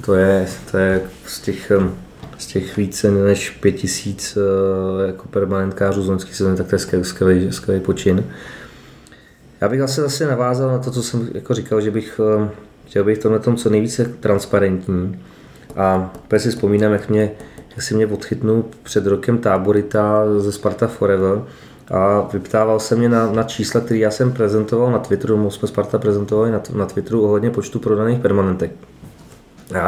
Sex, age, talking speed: male, 20-39, 165 wpm